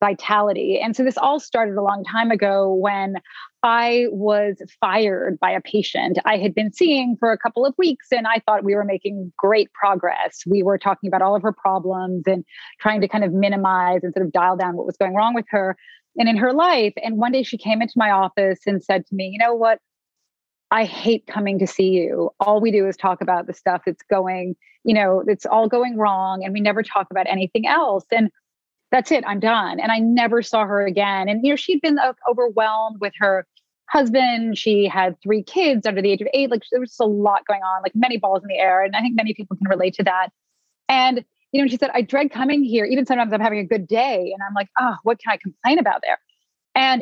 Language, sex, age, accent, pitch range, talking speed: English, female, 30-49, American, 195-235 Hz, 240 wpm